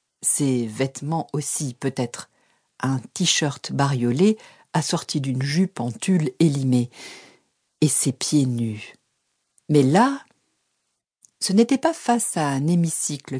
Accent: French